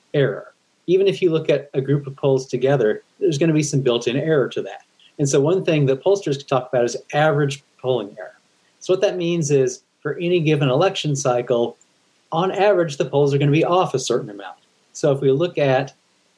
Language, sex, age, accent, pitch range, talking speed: English, male, 30-49, American, 130-160 Hz, 215 wpm